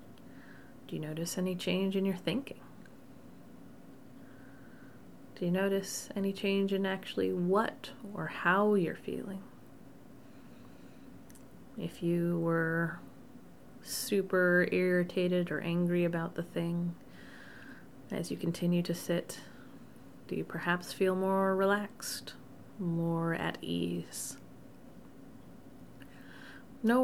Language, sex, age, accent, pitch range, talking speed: English, female, 30-49, American, 170-195 Hz, 100 wpm